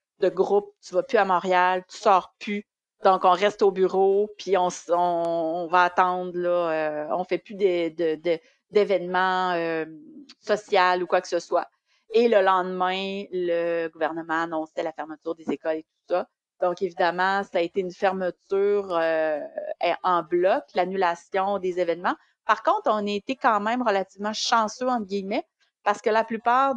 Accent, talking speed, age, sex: Canadian, 175 wpm, 30-49, female